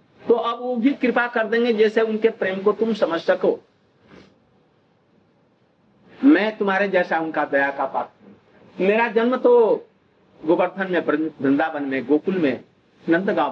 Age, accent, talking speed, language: 50-69, native, 135 wpm, Hindi